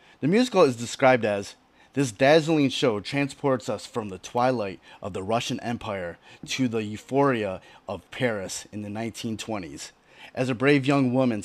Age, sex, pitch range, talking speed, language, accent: 30-49, male, 110-145 Hz, 155 wpm, English, American